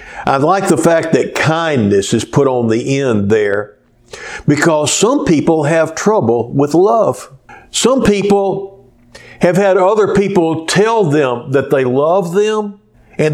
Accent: American